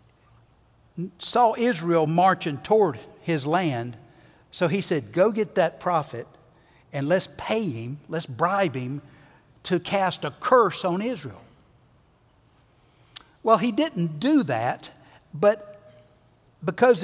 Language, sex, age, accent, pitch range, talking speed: English, male, 60-79, American, 150-220 Hz, 115 wpm